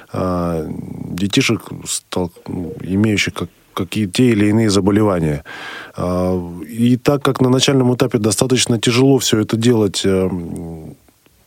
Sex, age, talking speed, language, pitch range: male, 20-39, 95 wpm, Russian, 90-115 Hz